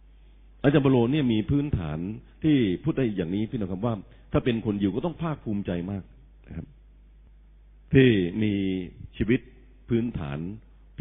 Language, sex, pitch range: Thai, male, 90-135 Hz